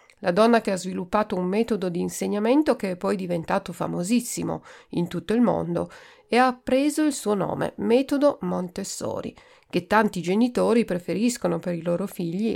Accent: native